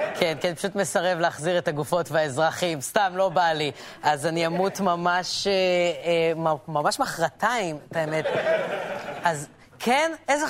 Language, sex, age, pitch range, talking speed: Hebrew, female, 20-39, 165-230 Hz, 150 wpm